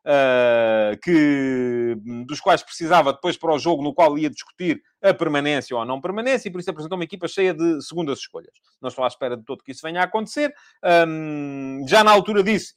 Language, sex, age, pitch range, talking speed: Portuguese, male, 30-49, 135-195 Hz, 210 wpm